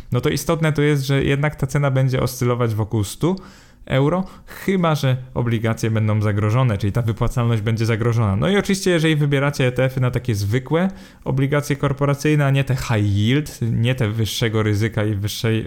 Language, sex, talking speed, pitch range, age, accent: Polish, male, 175 wpm, 110-140 Hz, 20-39, native